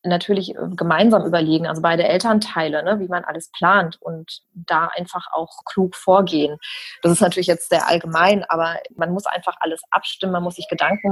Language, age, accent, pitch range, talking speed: German, 30-49, German, 170-205 Hz, 180 wpm